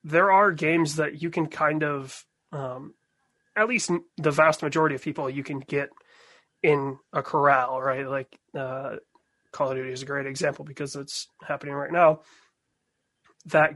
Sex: male